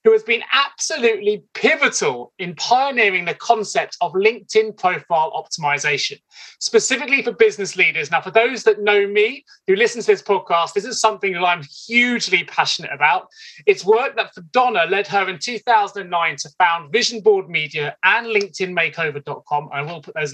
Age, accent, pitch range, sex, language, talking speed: 30-49, British, 185-275 Hz, male, English, 165 wpm